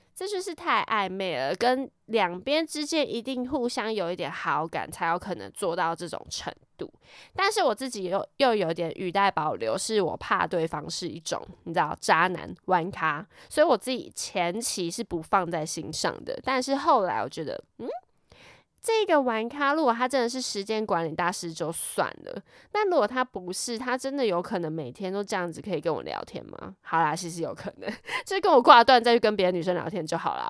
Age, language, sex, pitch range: 20-39, Chinese, female, 180-270 Hz